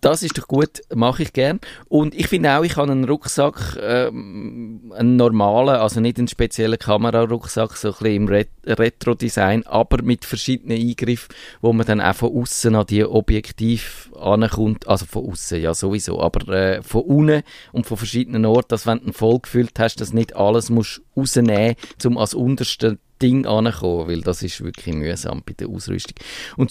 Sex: male